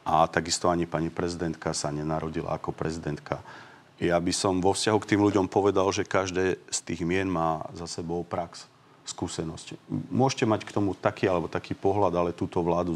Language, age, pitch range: Slovak, 40-59, 85-105 Hz